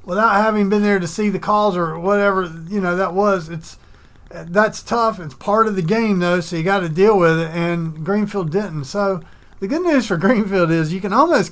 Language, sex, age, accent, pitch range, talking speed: English, male, 40-59, American, 150-190 Hz, 225 wpm